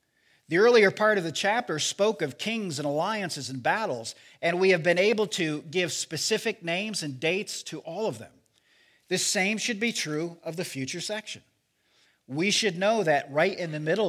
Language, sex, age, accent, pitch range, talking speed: English, male, 50-69, American, 140-190 Hz, 190 wpm